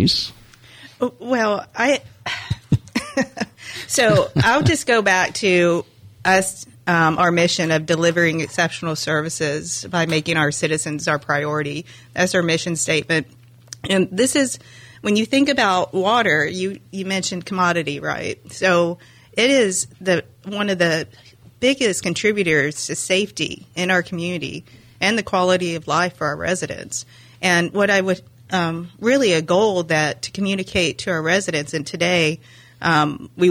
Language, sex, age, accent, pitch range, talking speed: English, female, 30-49, American, 155-185 Hz, 140 wpm